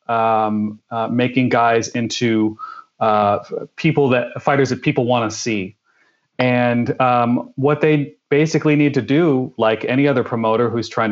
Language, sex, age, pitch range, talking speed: English, male, 30-49, 110-135 Hz, 150 wpm